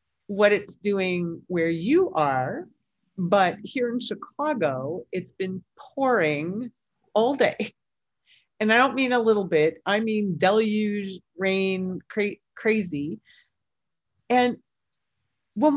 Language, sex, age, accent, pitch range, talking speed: English, female, 40-59, American, 170-235 Hz, 110 wpm